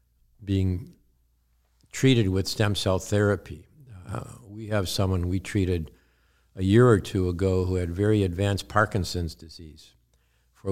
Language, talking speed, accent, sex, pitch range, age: English, 135 wpm, American, male, 90-110 Hz, 60-79